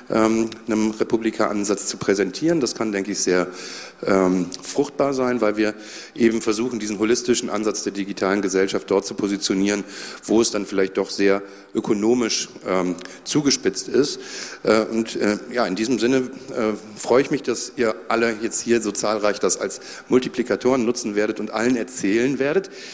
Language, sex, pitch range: German, male, 95-115 Hz